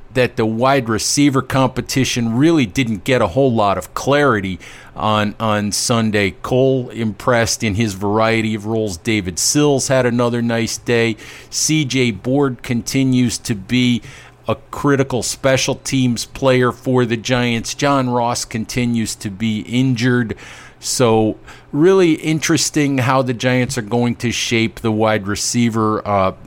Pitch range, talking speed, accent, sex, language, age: 115-135 Hz, 140 wpm, American, male, English, 50-69